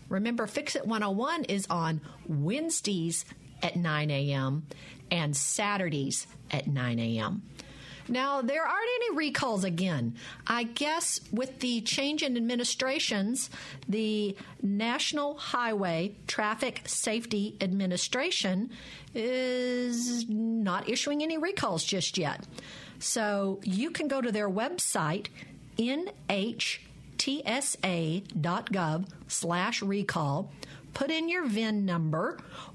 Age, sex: 50-69, female